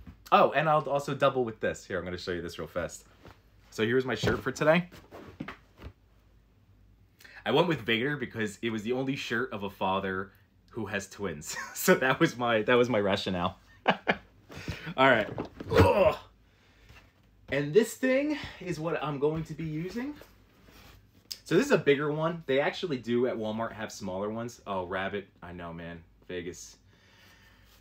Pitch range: 95-130 Hz